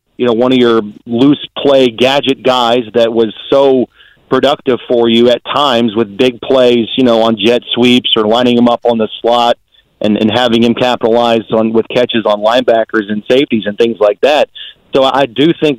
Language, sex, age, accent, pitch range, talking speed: English, male, 40-59, American, 120-145 Hz, 200 wpm